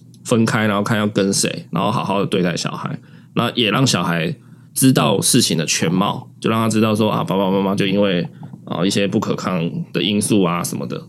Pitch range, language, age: 110-145 Hz, Chinese, 20-39